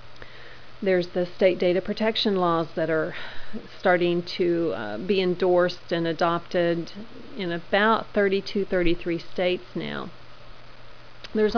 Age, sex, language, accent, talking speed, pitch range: 40-59, female, English, American, 110 wpm, 180-205 Hz